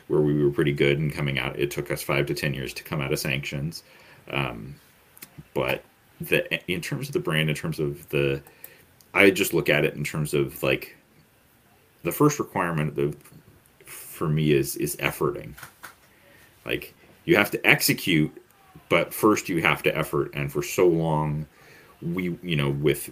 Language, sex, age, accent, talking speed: English, male, 30-49, American, 175 wpm